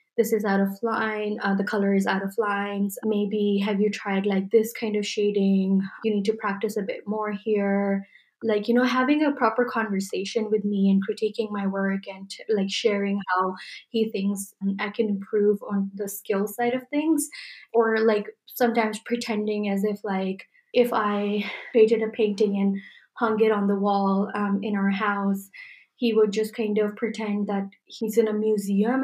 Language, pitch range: English, 200-230 Hz